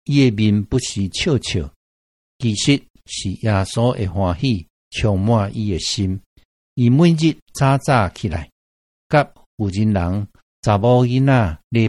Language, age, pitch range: Chinese, 60-79, 90-125 Hz